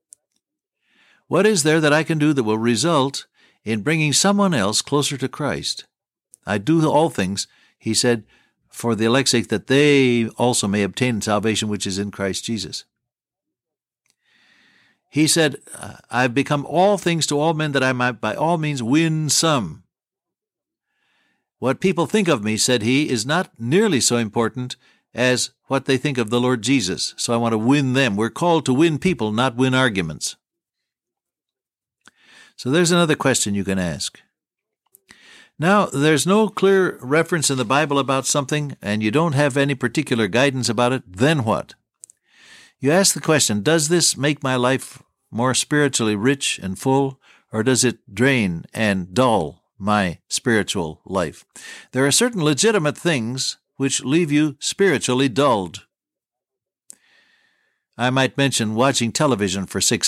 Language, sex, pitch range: English, male, 115-155 Hz